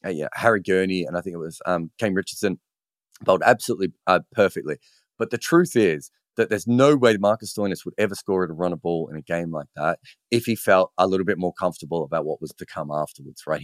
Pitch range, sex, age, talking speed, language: 85-110 Hz, male, 30-49, 240 wpm, English